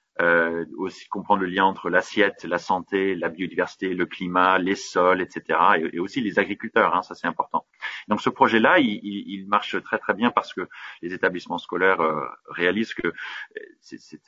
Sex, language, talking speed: male, French, 185 wpm